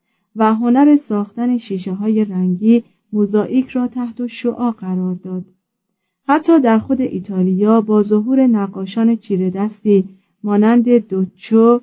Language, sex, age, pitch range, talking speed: Persian, female, 40-59, 195-235 Hz, 120 wpm